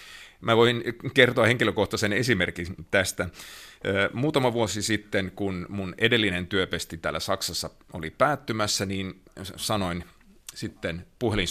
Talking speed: 105 wpm